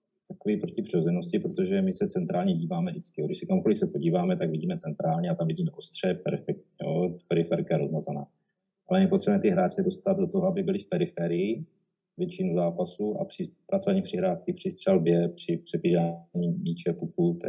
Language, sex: Czech, male